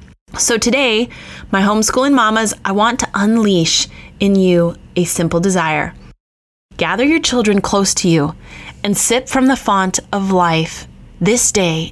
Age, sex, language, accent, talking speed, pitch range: 20-39, female, English, American, 145 wpm, 160-205 Hz